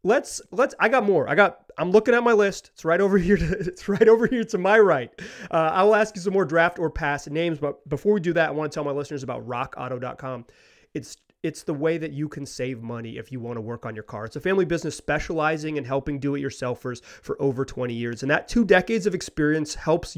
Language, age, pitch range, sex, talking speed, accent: English, 30-49, 140-185 Hz, male, 245 wpm, American